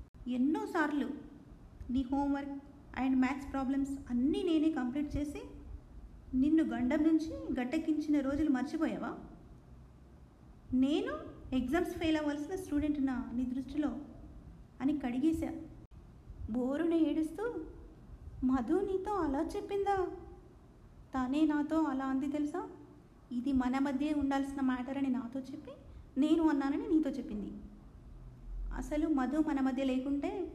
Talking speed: 100 wpm